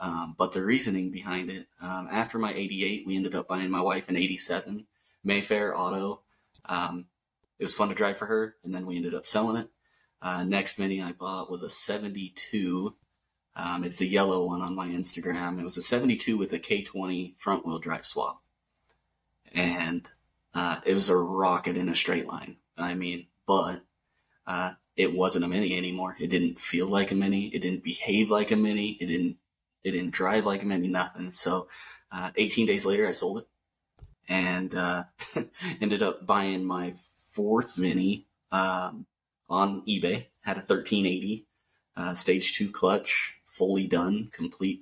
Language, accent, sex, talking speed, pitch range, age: English, American, male, 175 wpm, 90-100 Hz, 30-49